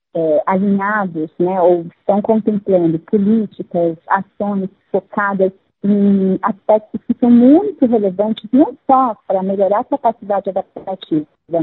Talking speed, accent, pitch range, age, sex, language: 115 wpm, Brazilian, 180-230 Hz, 40-59, female, Portuguese